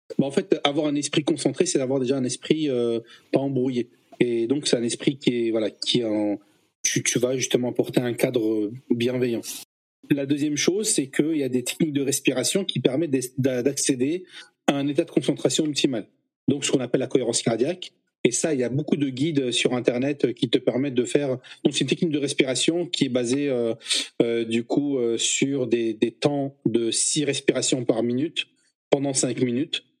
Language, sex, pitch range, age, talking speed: French, male, 125-155 Hz, 40-59, 200 wpm